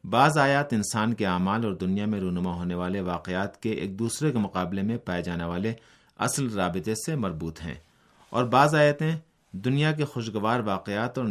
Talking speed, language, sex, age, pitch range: 180 wpm, Urdu, male, 30-49, 90-125 Hz